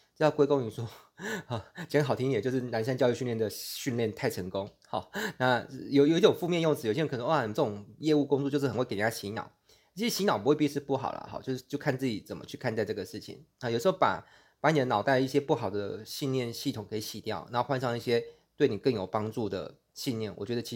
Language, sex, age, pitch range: Chinese, male, 20-39, 110-140 Hz